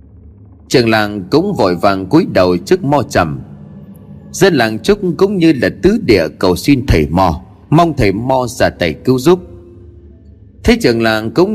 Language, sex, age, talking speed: Vietnamese, male, 30-49, 170 wpm